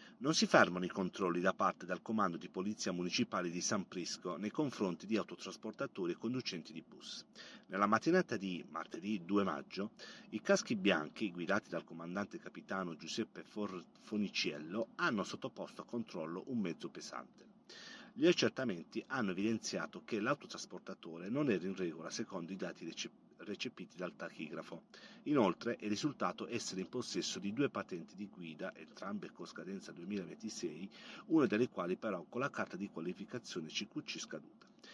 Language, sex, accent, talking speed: Italian, male, native, 150 wpm